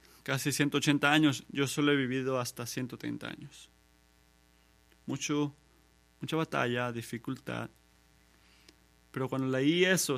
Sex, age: male, 30-49